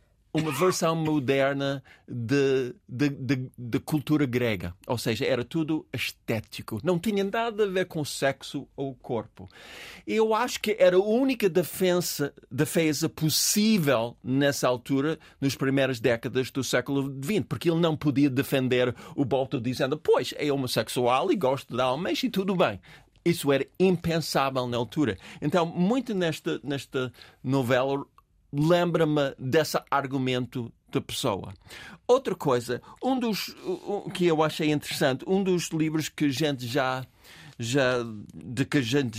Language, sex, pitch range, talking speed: Portuguese, male, 130-170 Hz, 145 wpm